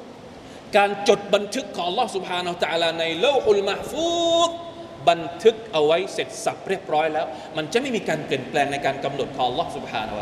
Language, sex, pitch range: Thai, male, 185-260 Hz